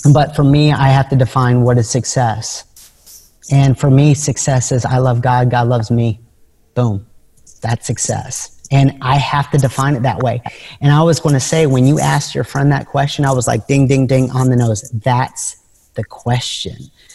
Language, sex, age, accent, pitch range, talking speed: English, male, 40-59, American, 125-145 Hz, 195 wpm